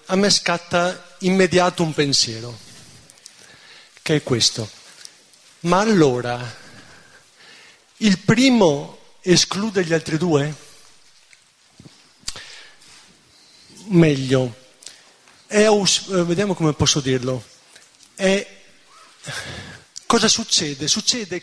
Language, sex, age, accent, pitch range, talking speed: Italian, male, 40-59, native, 160-200 Hz, 70 wpm